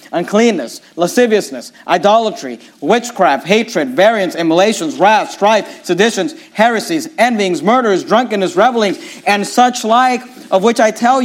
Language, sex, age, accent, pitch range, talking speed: English, male, 40-59, American, 210-270 Hz, 115 wpm